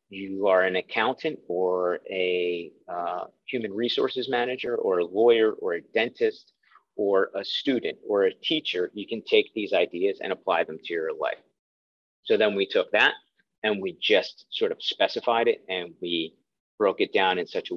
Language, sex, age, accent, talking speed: English, male, 40-59, American, 180 wpm